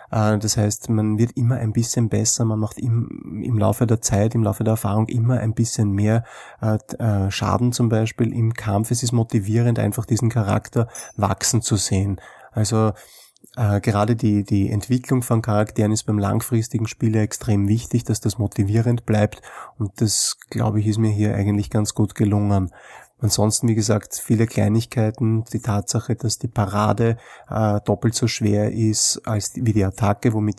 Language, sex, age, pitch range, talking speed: German, male, 30-49, 105-115 Hz, 175 wpm